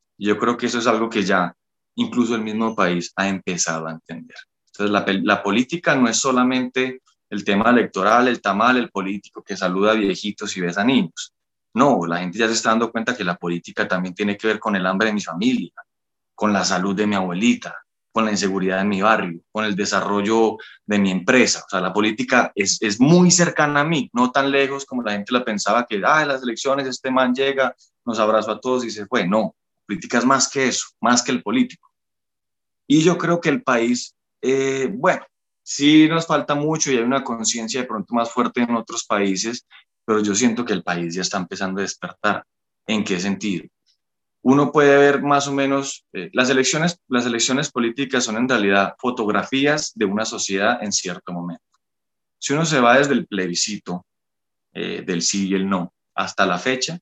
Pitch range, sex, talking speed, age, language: 100-135 Hz, male, 205 wpm, 20-39, Spanish